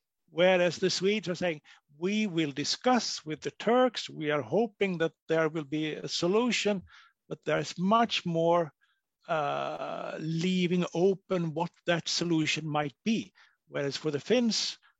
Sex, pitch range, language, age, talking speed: male, 155-190 Hz, Turkish, 50-69, 150 wpm